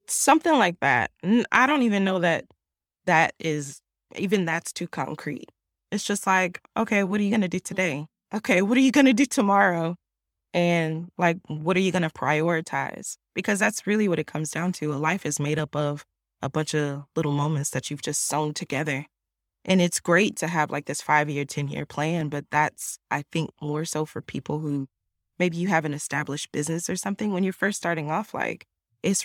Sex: female